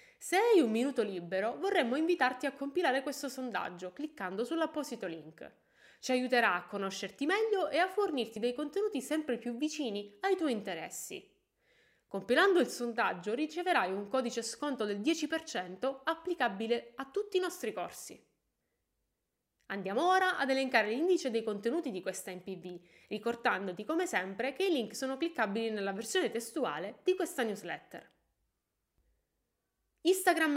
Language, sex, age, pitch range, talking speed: Italian, female, 20-39, 200-320 Hz, 135 wpm